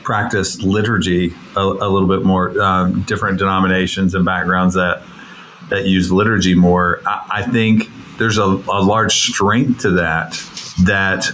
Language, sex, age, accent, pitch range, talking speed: English, male, 40-59, American, 95-110 Hz, 150 wpm